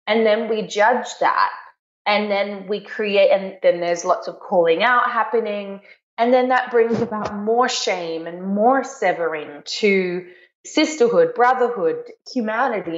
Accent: Australian